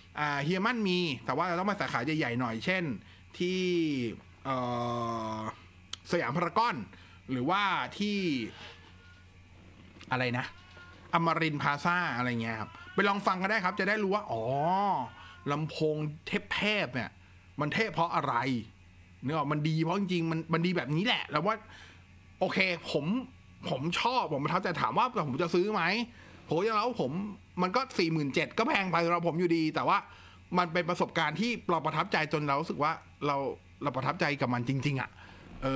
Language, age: Thai, 30-49